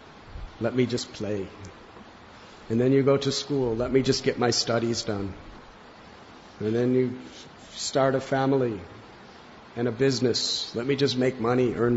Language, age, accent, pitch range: English, 50-69, American, 105-135 Hz